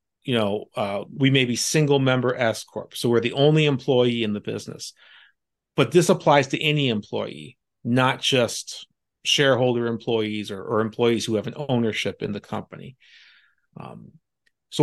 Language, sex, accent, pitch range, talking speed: English, male, American, 120-150 Hz, 160 wpm